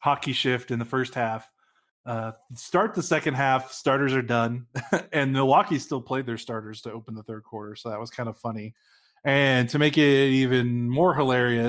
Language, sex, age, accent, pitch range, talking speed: English, male, 20-39, American, 120-140 Hz, 195 wpm